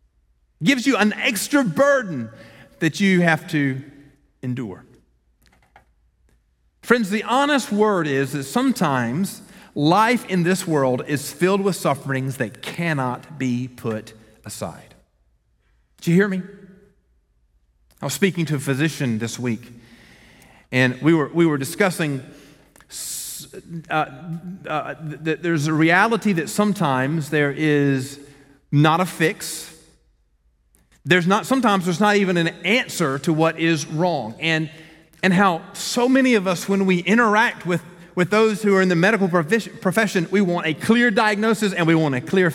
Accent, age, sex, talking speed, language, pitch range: American, 40-59, male, 145 wpm, English, 135-200 Hz